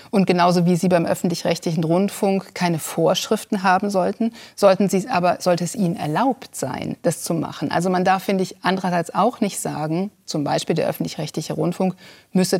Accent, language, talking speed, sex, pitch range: German, German, 175 wpm, female, 175-210 Hz